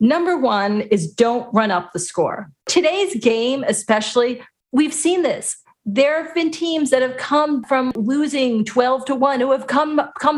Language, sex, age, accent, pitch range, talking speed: English, female, 40-59, American, 210-290 Hz, 175 wpm